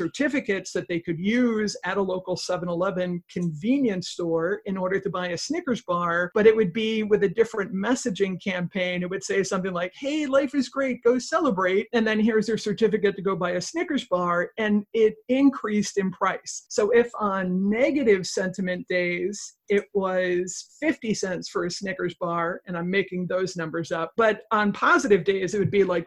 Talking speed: 190 wpm